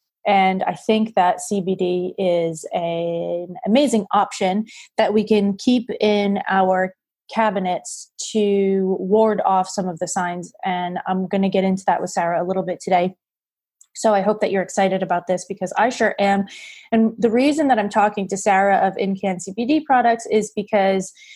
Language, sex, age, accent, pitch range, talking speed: English, female, 30-49, American, 190-215 Hz, 175 wpm